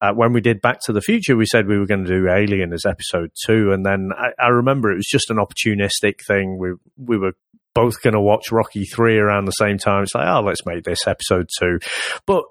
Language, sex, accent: English, male, British